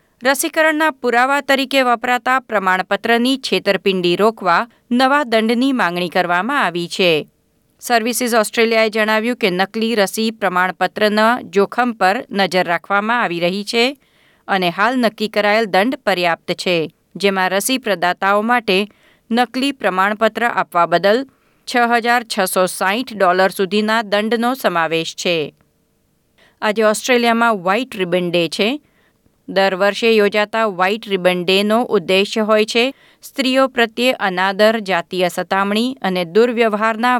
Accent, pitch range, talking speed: native, 185-235 Hz, 115 wpm